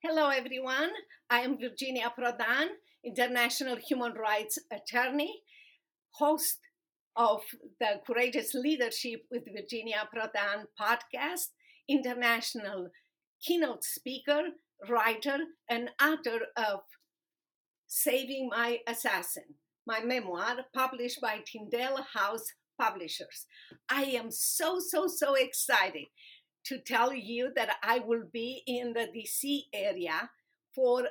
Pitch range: 225-280 Hz